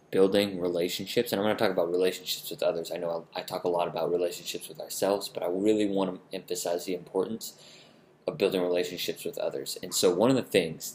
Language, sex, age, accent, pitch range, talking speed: English, male, 20-39, American, 85-95 Hz, 220 wpm